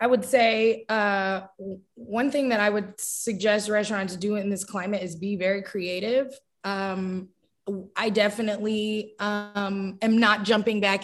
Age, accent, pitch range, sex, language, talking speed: 20-39, American, 190-235 Hz, female, English, 145 wpm